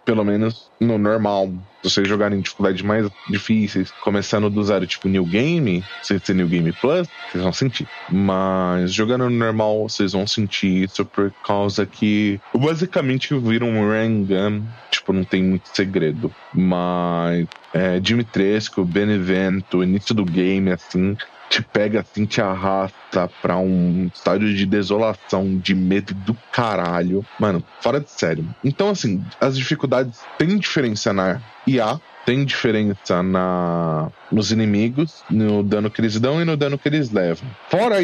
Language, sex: Portuguese, male